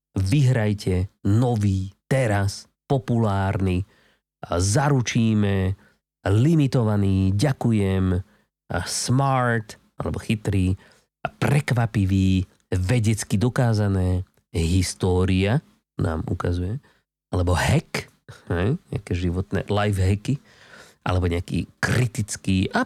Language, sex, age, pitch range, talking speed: Slovak, male, 30-49, 95-125 Hz, 75 wpm